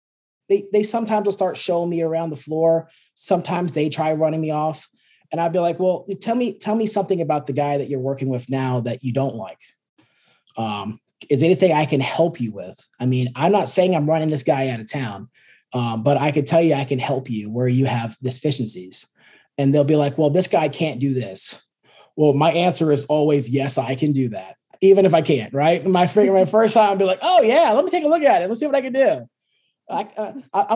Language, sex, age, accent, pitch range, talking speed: English, male, 20-39, American, 135-185 Hz, 235 wpm